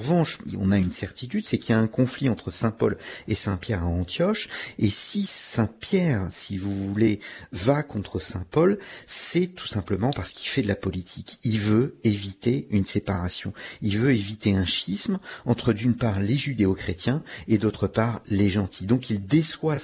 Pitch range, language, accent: 100-125 Hz, French, French